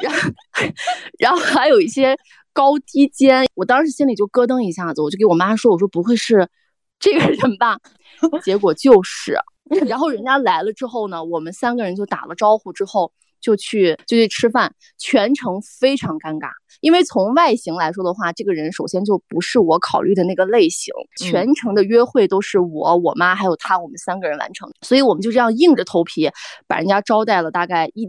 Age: 20-39